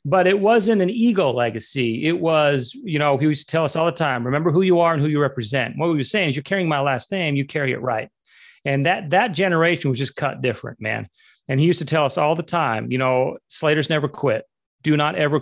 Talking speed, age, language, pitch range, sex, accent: 255 wpm, 40-59, English, 135-160 Hz, male, American